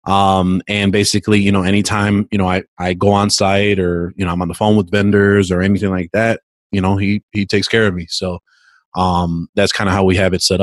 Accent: American